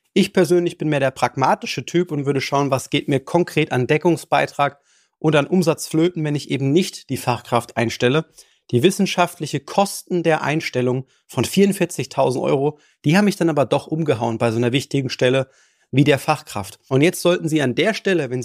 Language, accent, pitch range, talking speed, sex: German, German, 135-170 Hz, 185 wpm, male